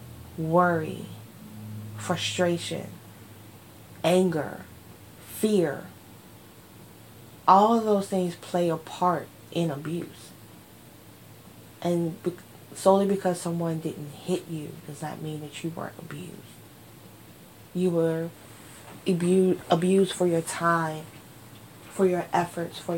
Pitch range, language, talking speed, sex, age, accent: 145-175 Hz, English, 95 wpm, female, 20-39, American